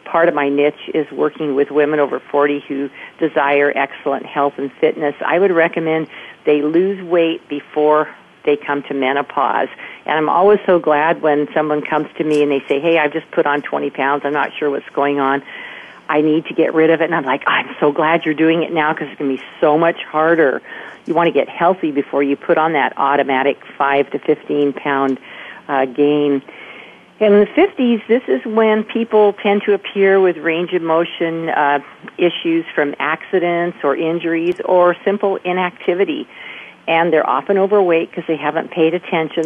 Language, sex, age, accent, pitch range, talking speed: English, female, 50-69, American, 145-170 Hz, 195 wpm